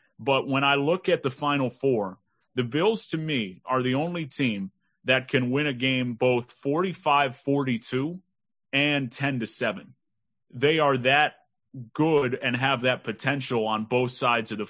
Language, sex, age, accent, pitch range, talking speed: English, male, 30-49, American, 115-135 Hz, 155 wpm